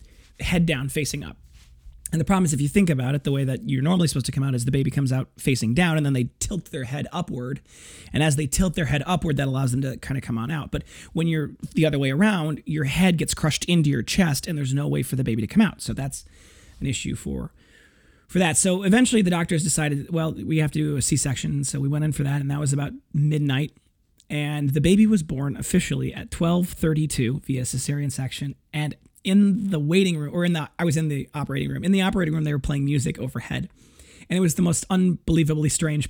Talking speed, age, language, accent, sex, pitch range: 245 wpm, 30-49, English, American, male, 140-175 Hz